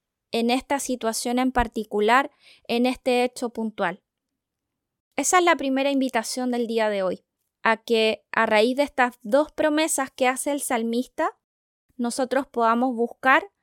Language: Spanish